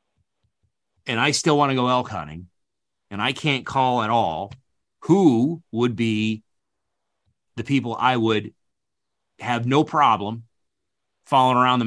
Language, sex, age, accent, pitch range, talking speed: English, male, 30-49, American, 105-140 Hz, 135 wpm